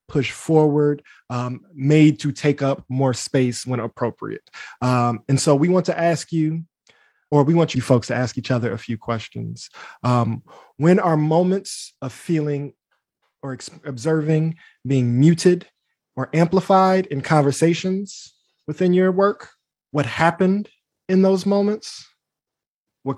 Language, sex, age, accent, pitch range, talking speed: English, male, 20-39, American, 125-160 Hz, 140 wpm